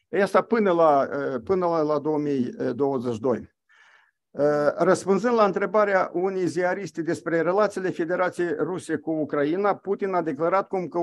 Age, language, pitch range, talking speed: 50-69, Romanian, 155-200 Hz, 125 wpm